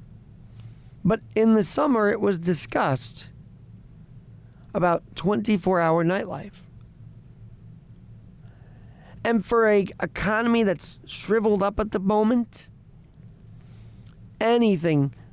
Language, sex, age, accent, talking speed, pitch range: English, male, 40-59, American, 80 wpm, 125-195 Hz